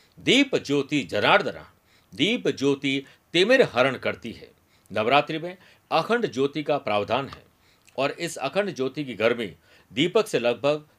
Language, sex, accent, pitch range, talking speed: Hindi, male, native, 120-155 Hz, 135 wpm